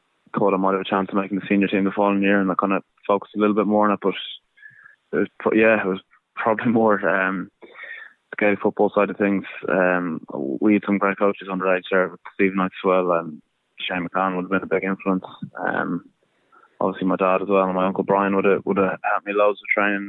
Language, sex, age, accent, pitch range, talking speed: English, male, 20-39, British, 95-105 Hz, 245 wpm